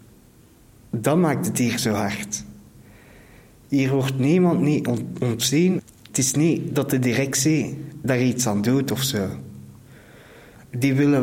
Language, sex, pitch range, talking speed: Dutch, male, 110-135 Hz, 130 wpm